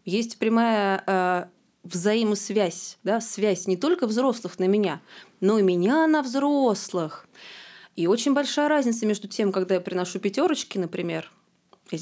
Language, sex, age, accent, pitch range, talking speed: Russian, female, 20-39, native, 185-230 Hz, 140 wpm